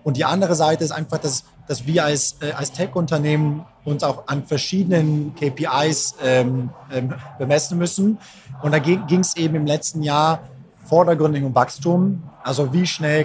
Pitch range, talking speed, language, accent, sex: 140-165 Hz, 160 wpm, German, German, male